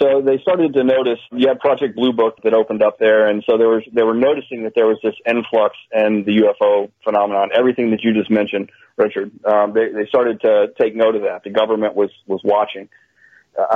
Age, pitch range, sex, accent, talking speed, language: 40-59, 110-125 Hz, male, American, 225 wpm, English